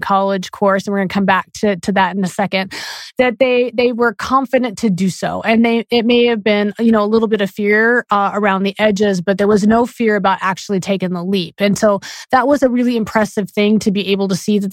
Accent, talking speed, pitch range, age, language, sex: American, 255 wpm, 200-240 Hz, 30-49, English, female